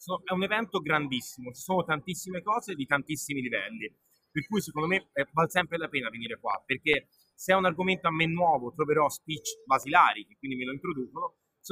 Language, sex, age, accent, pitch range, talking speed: Italian, male, 30-49, native, 145-190 Hz, 195 wpm